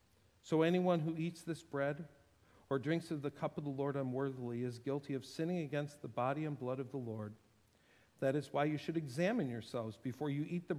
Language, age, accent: English, 50-69, American